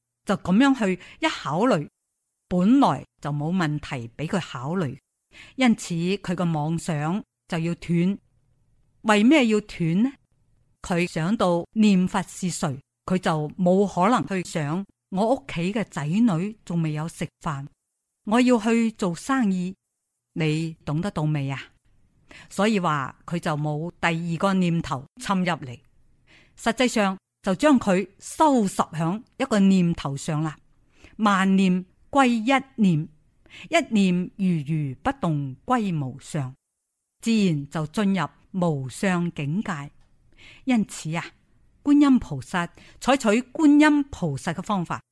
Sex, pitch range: female, 150-210 Hz